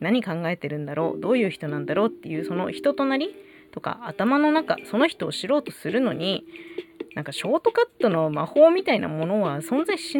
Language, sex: Japanese, female